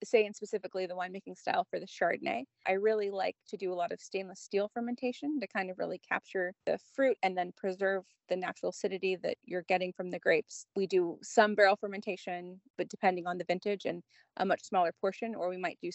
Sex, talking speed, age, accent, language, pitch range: female, 220 wpm, 30-49, American, English, 175-195 Hz